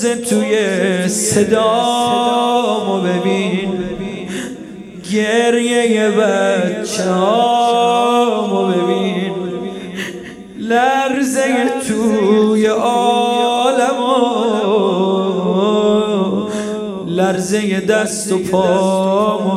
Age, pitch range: 30-49, 205-255 Hz